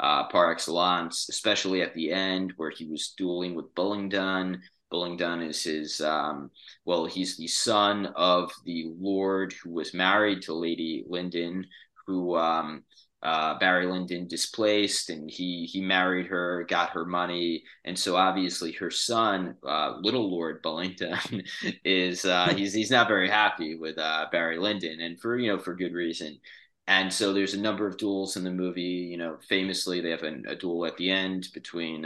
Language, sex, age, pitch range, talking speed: English, male, 20-39, 85-95 Hz, 175 wpm